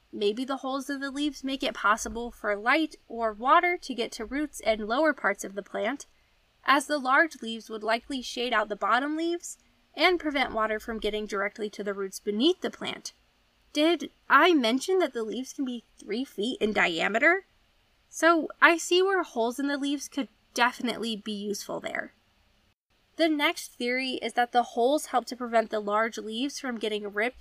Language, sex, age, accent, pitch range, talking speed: English, female, 20-39, American, 225-315 Hz, 190 wpm